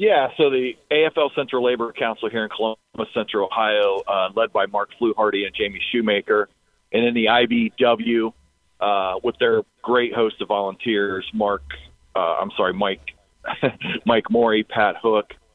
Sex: male